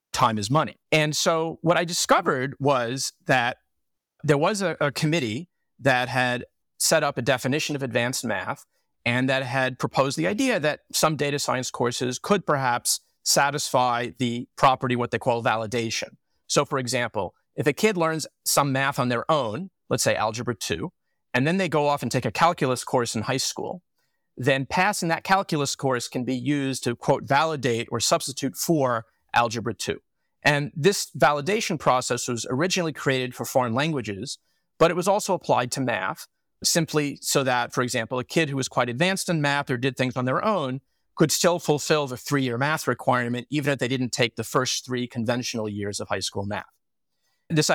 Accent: American